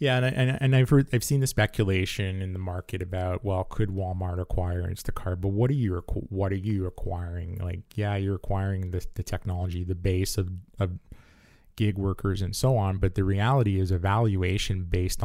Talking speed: 195 wpm